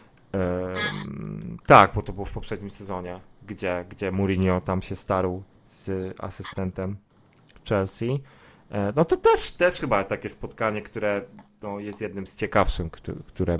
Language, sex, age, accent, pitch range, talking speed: Polish, male, 30-49, native, 95-105 Hz, 130 wpm